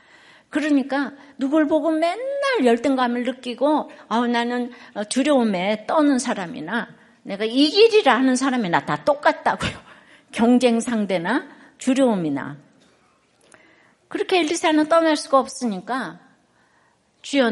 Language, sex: Korean, female